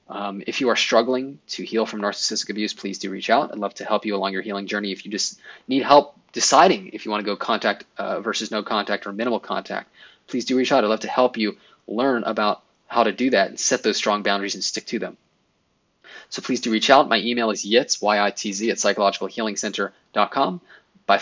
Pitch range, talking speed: 100-125 Hz, 225 wpm